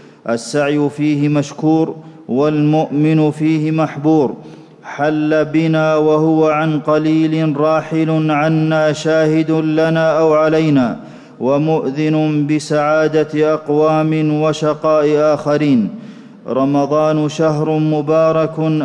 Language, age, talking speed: Arabic, 40-59, 80 wpm